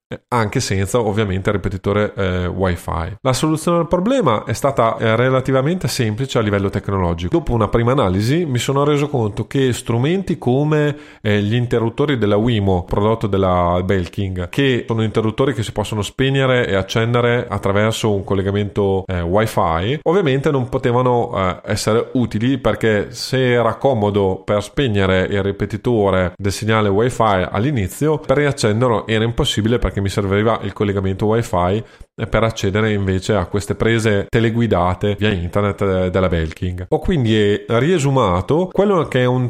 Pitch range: 100-130 Hz